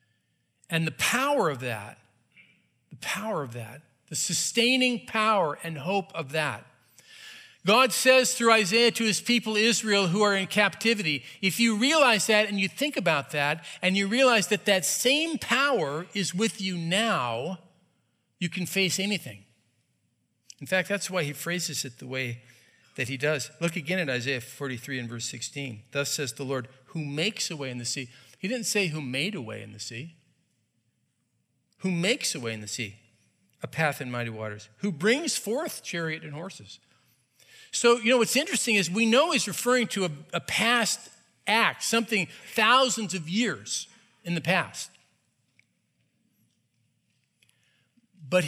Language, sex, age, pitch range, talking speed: English, male, 50-69, 140-220 Hz, 165 wpm